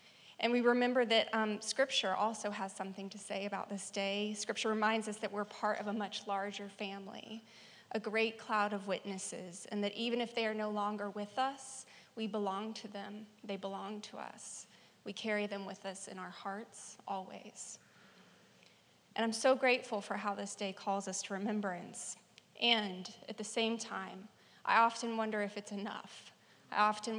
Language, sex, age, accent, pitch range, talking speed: English, female, 20-39, American, 205-230 Hz, 180 wpm